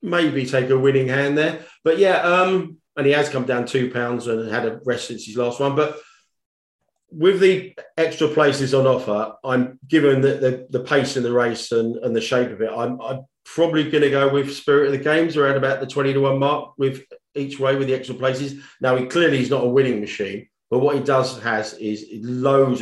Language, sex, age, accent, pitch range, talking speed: English, male, 40-59, British, 120-145 Hz, 225 wpm